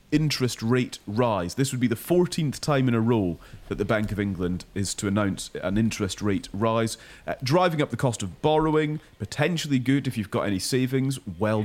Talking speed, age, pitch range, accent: 200 wpm, 30-49, 100-130 Hz, British